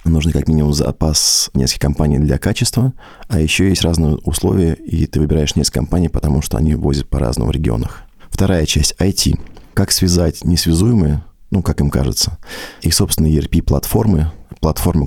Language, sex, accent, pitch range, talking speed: Russian, male, native, 75-90 Hz, 165 wpm